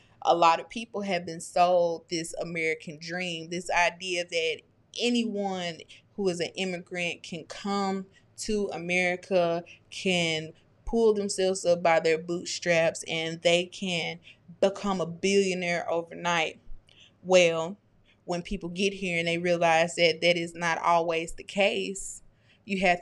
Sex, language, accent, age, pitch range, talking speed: female, English, American, 20-39, 165-185 Hz, 140 wpm